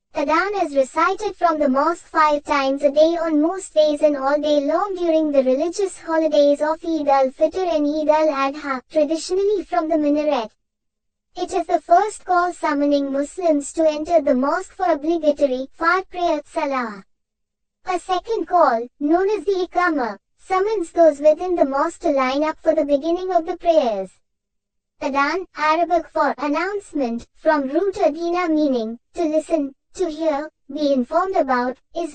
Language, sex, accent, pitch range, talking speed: English, male, Indian, 290-350 Hz, 155 wpm